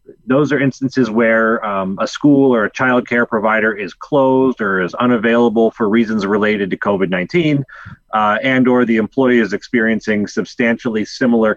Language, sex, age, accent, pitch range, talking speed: English, male, 30-49, American, 95-135 Hz, 155 wpm